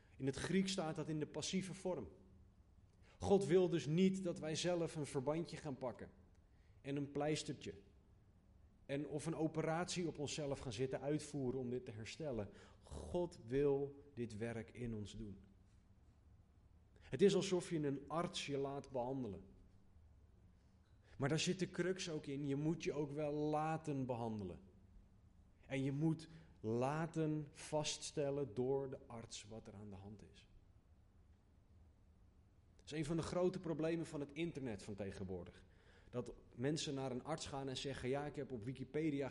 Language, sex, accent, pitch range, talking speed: Dutch, male, Dutch, 95-145 Hz, 160 wpm